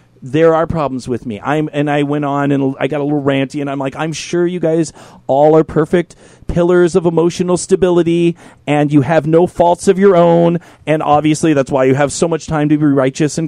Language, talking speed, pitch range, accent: English, 225 wpm, 130-170 Hz, American